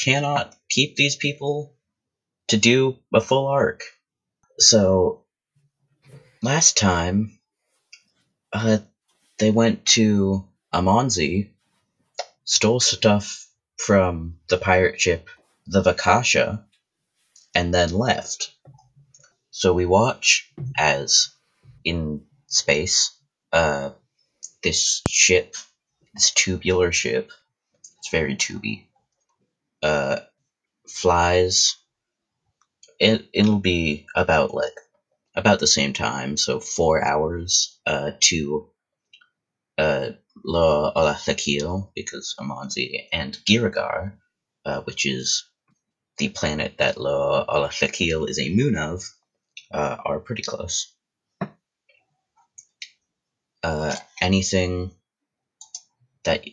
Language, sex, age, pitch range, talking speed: English, male, 30-49, 90-130 Hz, 90 wpm